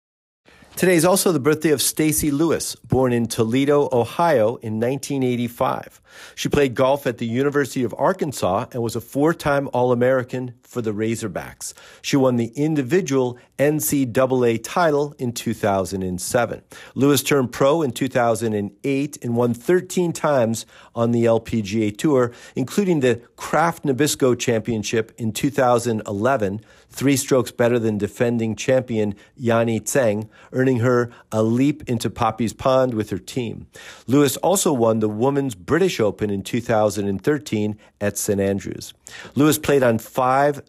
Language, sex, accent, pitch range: English, male, American, 110-140 Hz